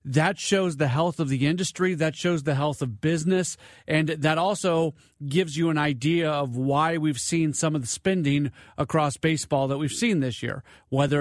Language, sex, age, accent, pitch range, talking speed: English, male, 40-59, American, 140-170 Hz, 195 wpm